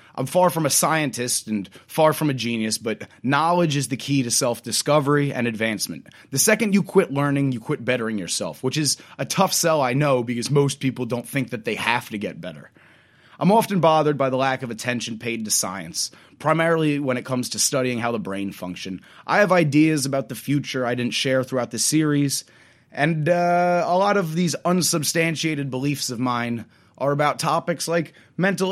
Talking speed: 195 wpm